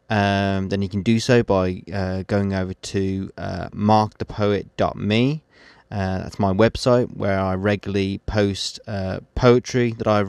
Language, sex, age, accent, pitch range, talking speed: English, male, 20-39, British, 95-110 Hz, 145 wpm